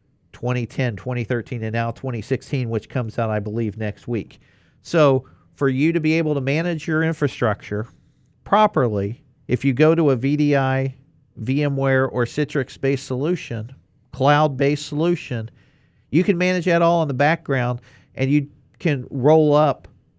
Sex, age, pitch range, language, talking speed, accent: male, 50-69, 115-140 Hz, English, 145 wpm, American